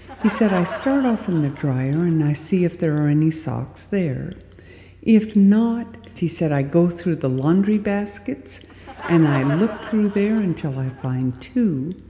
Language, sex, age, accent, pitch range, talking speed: English, female, 60-79, American, 130-185 Hz, 180 wpm